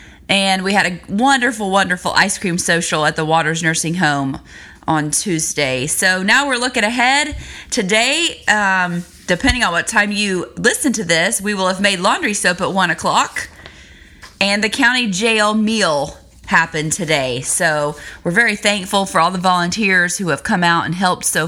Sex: female